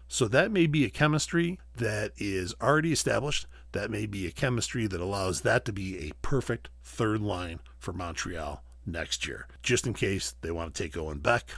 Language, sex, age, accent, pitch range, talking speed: English, male, 50-69, American, 80-115 Hz, 190 wpm